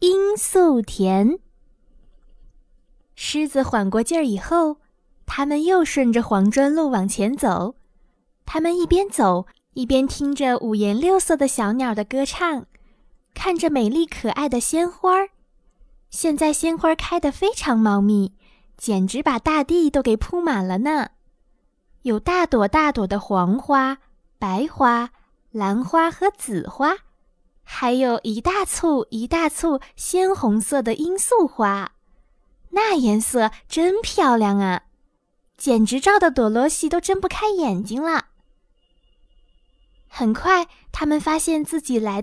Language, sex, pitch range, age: Chinese, female, 225-330 Hz, 20-39